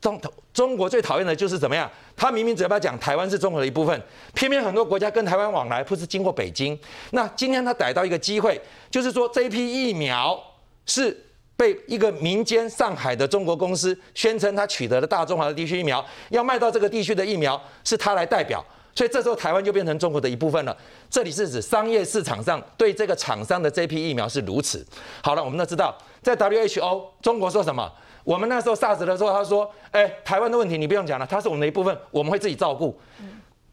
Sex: male